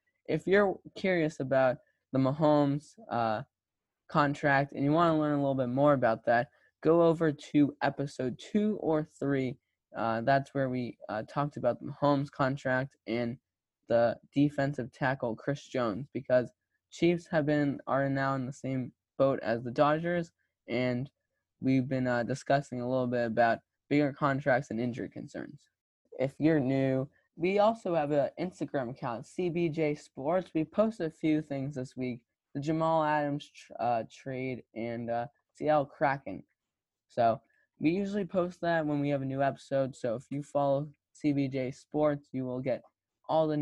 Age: 10-29